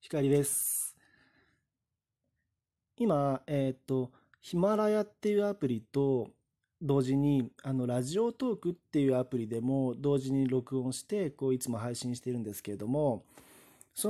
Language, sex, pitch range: Japanese, male, 115-150 Hz